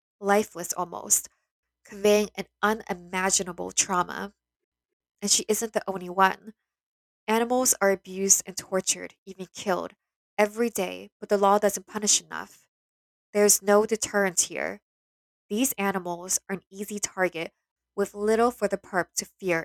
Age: 10-29